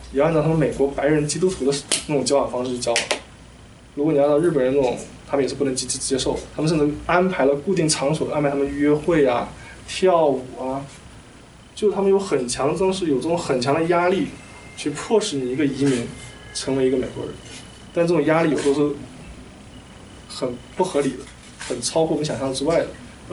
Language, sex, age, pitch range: Chinese, male, 20-39, 130-165 Hz